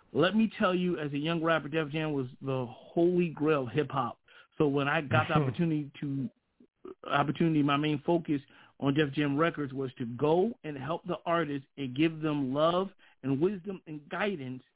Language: English